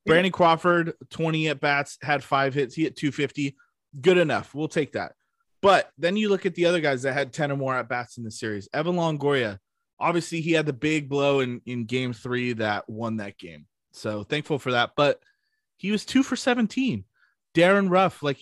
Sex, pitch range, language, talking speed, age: male, 125-165 Hz, English, 200 wpm, 20-39